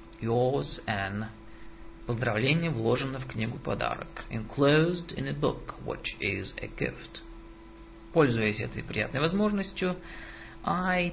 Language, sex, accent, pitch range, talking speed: Russian, male, native, 110-165 Hz, 110 wpm